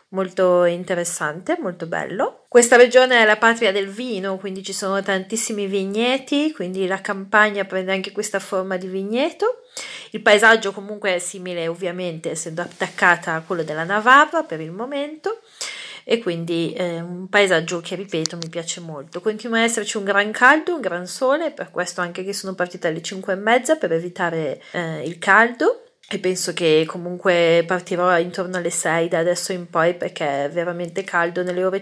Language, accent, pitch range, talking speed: Italian, native, 175-215 Hz, 175 wpm